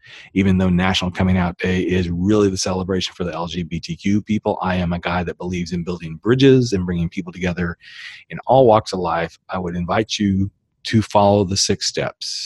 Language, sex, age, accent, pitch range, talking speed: English, male, 40-59, American, 85-105 Hz, 200 wpm